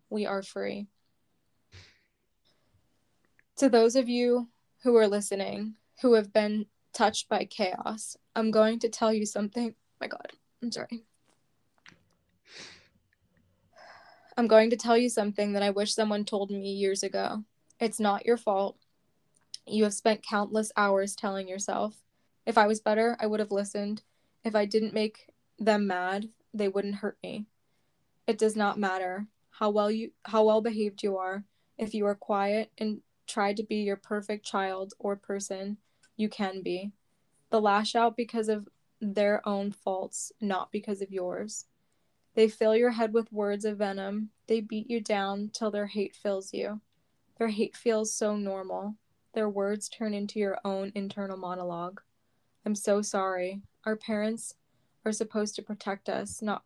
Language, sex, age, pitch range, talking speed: English, female, 10-29, 195-220 Hz, 160 wpm